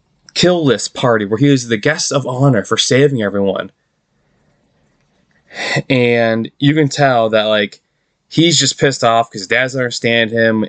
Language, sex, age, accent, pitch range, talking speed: English, male, 20-39, American, 115-150 Hz, 155 wpm